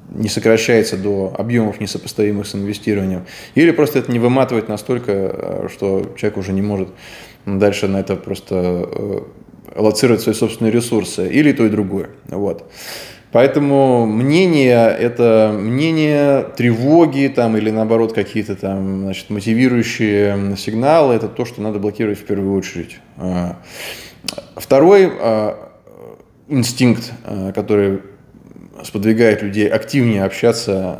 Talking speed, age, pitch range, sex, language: 120 wpm, 20-39, 100-120 Hz, male, Russian